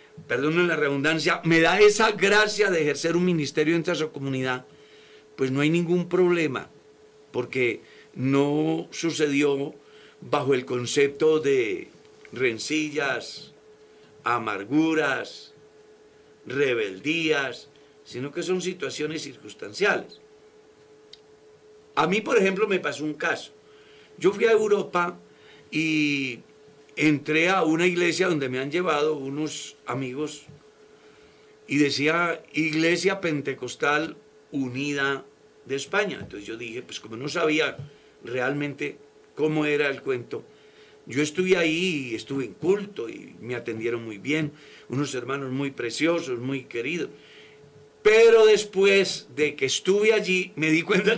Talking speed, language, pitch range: 120 wpm, Spanish, 145-200 Hz